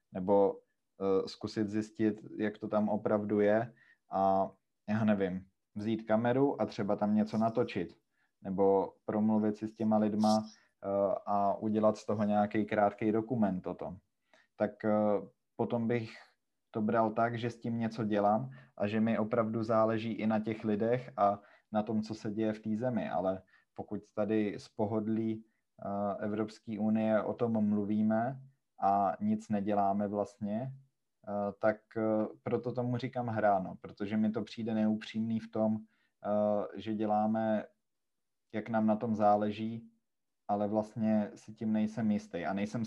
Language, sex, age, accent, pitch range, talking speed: Czech, male, 20-39, native, 105-110 Hz, 145 wpm